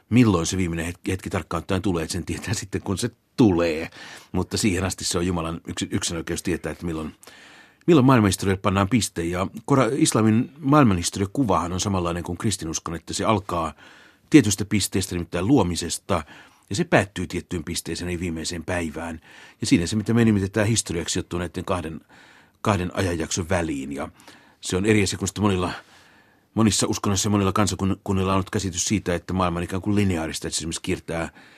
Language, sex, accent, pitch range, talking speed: Finnish, male, native, 85-105 Hz, 165 wpm